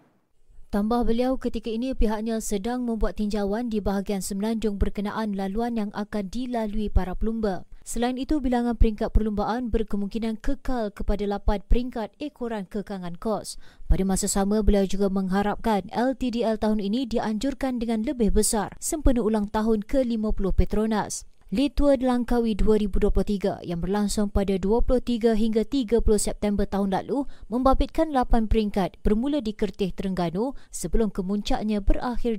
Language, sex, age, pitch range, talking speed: Malay, female, 20-39, 200-240 Hz, 130 wpm